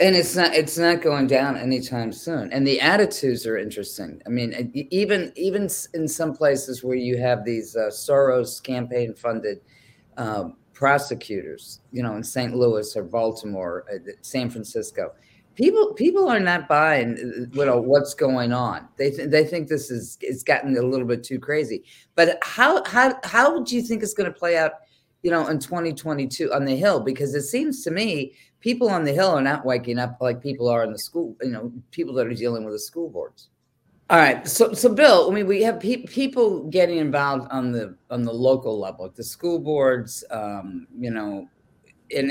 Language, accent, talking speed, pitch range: English, American, 195 wpm, 120-180 Hz